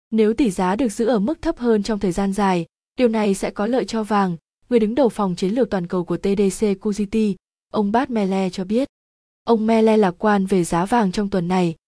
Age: 20-39